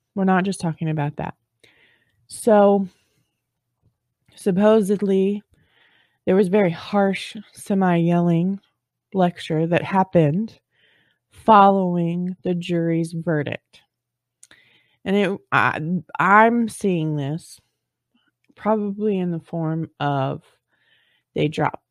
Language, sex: English, female